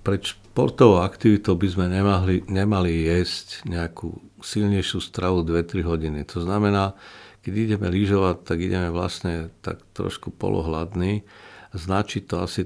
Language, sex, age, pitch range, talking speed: Slovak, male, 50-69, 90-105 Hz, 130 wpm